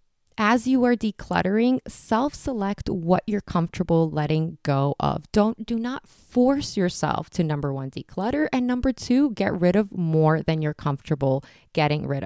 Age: 20-39